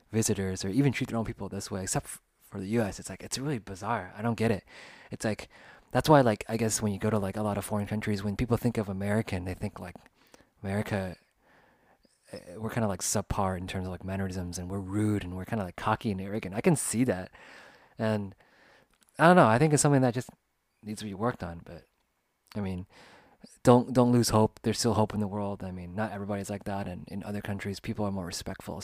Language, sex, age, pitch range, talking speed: English, male, 20-39, 95-115 Hz, 240 wpm